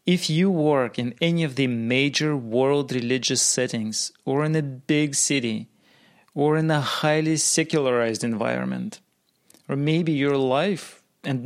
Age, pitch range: 30-49, 125-170 Hz